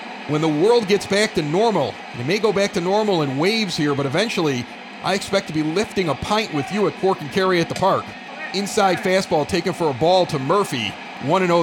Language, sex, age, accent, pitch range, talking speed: English, male, 40-59, American, 160-205 Hz, 225 wpm